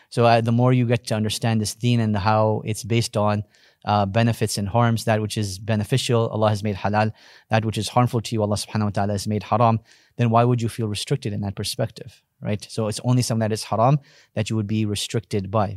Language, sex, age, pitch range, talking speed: English, male, 30-49, 105-120 Hz, 240 wpm